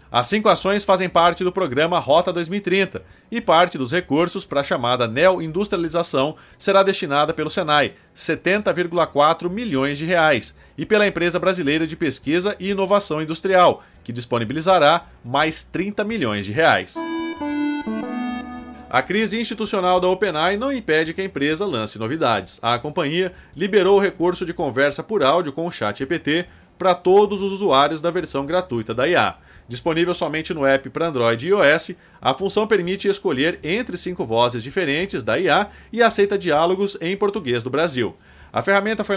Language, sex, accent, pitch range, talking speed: Portuguese, male, Brazilian, 145-200 Hz, 160 wpm